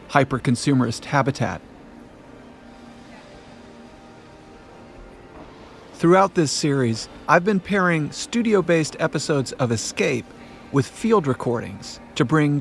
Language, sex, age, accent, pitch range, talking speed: English, male, 50-69, American, 125-160 Hz, 80 wpm